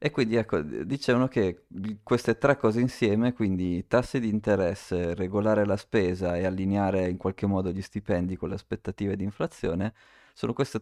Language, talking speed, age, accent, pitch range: Italian, 160 wpm, 20-39, native, 95-110 Hz